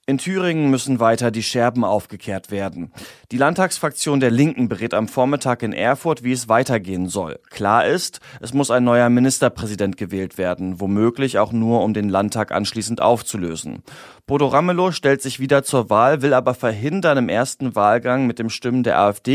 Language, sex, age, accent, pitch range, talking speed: German, male, 30-49, German, 105-130 Hz, 175 wpm